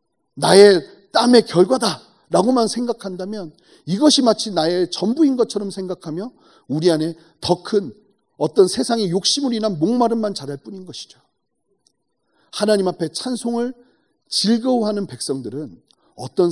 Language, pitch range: Korean, 130-190 Hz